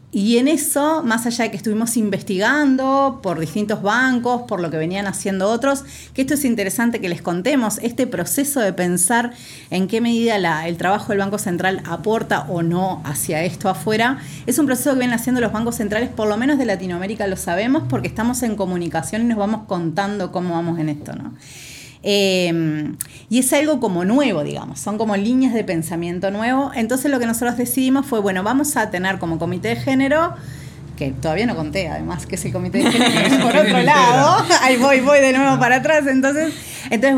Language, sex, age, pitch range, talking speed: Spanish, female, 30-49, 180-255 Hz, 195 wpm